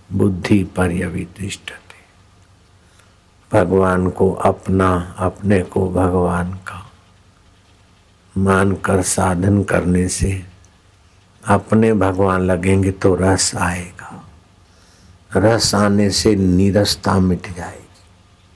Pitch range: 90-100 Hz